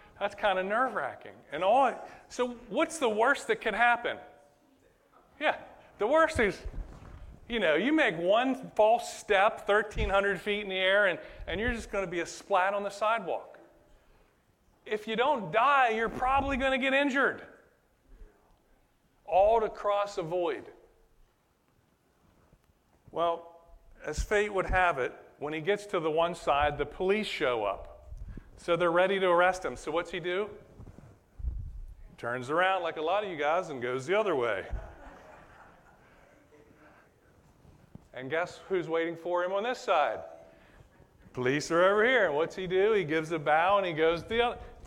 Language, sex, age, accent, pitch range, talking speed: English, male, 40-59, American, 170-225 Hz, 160 wpm